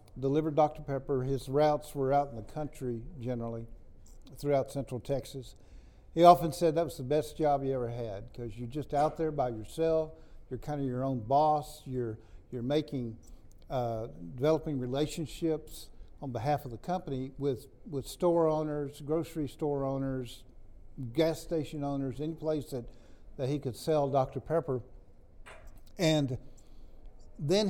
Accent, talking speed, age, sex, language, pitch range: American, 150 wpm, 50-69, male, English, 120-150 Hz